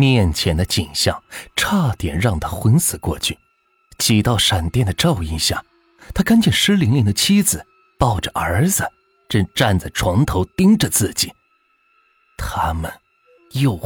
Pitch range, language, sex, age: 85-135 Hz, Chinese, male, 30-49